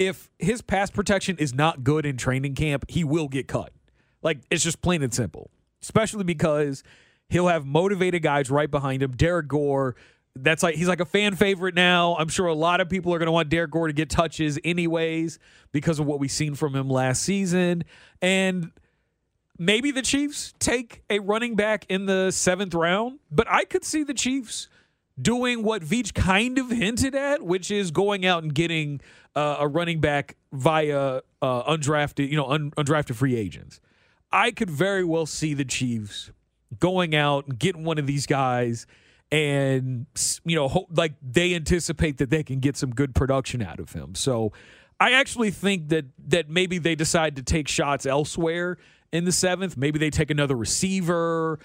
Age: 40-59